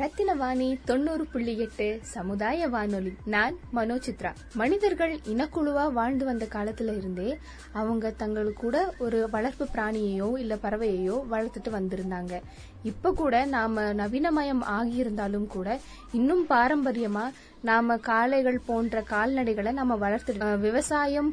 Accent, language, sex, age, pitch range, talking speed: native, Tamil, female, 20-39, 215-265 Hz, 80 wpm